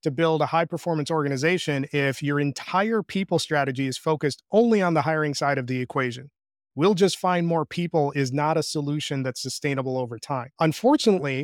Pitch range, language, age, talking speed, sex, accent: 145-175 Hz, English, 30-49, 185 wpm, male, American